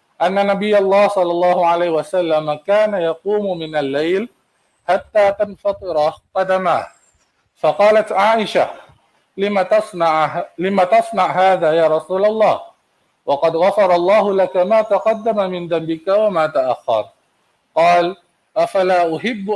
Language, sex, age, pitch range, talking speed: Malay, male, 50-69, 170-210 Hz, 115 wpm